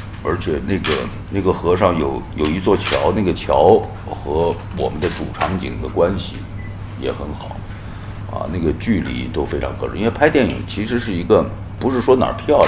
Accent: native